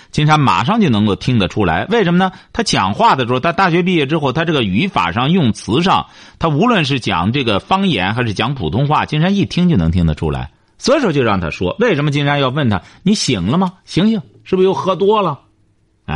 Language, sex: Chinese, male